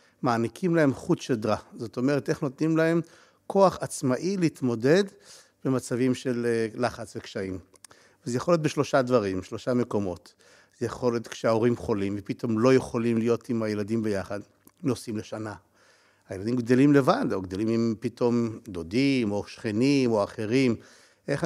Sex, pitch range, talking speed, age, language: male, 115-150 Hz, 140 wpm, 60-79, Hebrew